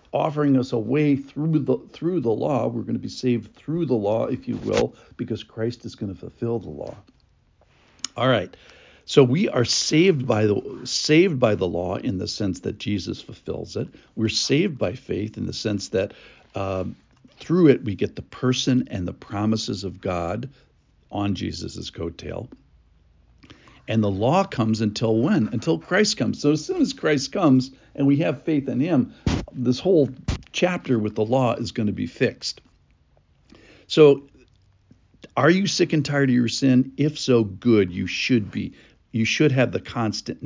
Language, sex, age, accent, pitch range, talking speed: English, male, 60-79, American, 105-140 Hz, 180 wpm